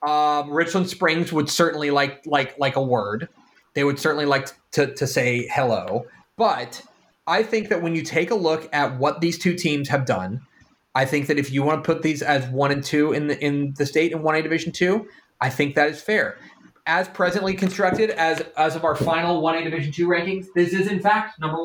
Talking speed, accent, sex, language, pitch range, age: 220 wpm, American, male, English, 140-180 Hz, 30-49